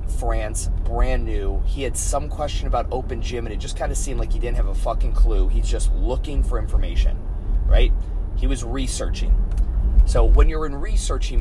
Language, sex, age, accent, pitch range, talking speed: English, male, 30-49, American, 85-105 Hz, 195 wpm